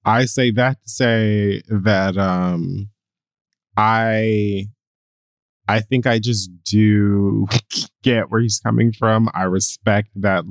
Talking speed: 120 wpm